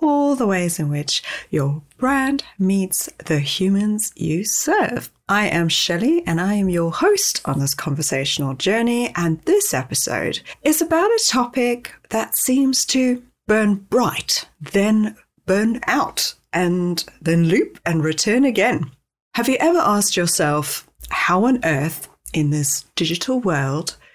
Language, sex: English, female